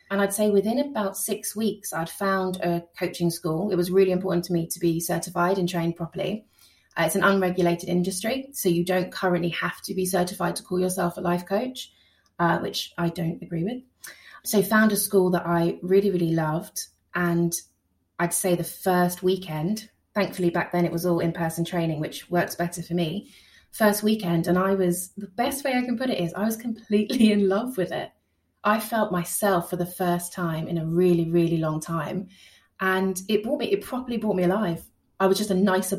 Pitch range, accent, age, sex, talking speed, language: 175-200 Hz, British, 20-39, female, 210 wpm, English